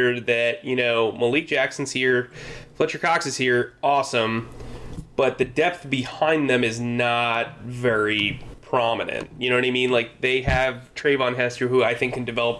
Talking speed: 165 wpm